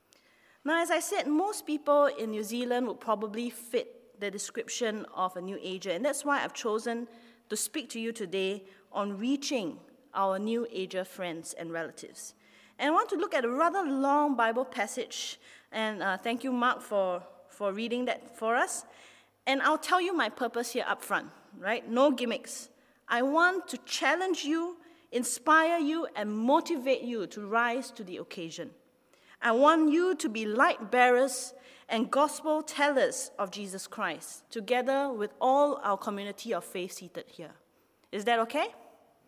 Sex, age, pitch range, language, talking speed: female, 30-49, 215-285 Hz, English, 170 wpm